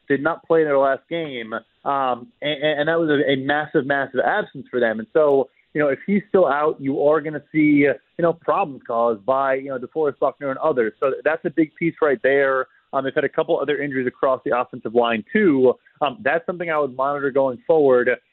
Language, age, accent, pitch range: English, 20-39, American, 145-175 Hz